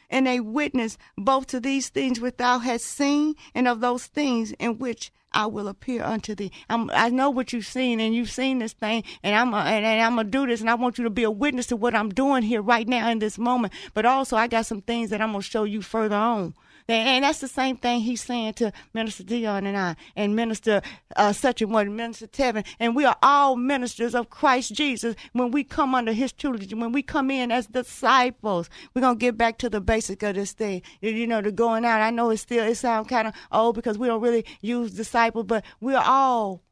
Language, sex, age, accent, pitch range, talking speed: English, female, 50-69, American, 220-255 Hz, 240 wpm